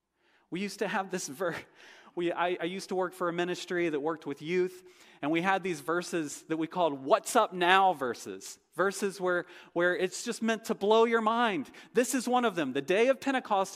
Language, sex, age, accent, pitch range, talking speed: English, male, 40-59, American, 145-200 Hz, 215 wpm